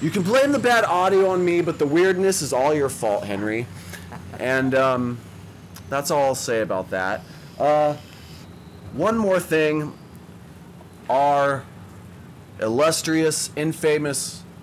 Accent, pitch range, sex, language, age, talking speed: American, 120-160 Hz, male, English, 30-49, 125 wpm